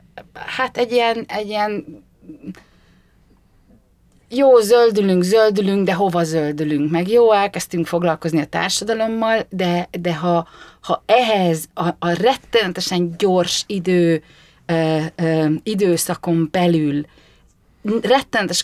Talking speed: 105 wpm